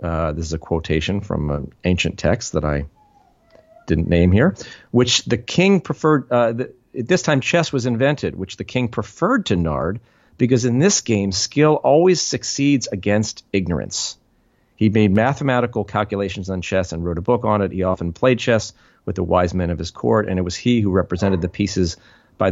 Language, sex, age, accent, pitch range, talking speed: English, male, 40-59, American, 90-120 Hz, 190 wpm